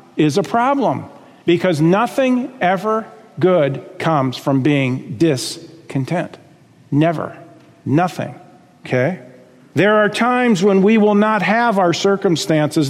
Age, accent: 50-69, American